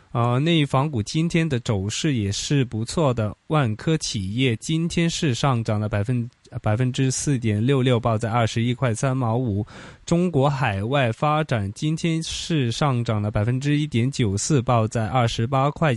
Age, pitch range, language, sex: 20-39, 115-150 Hz, Chinese, male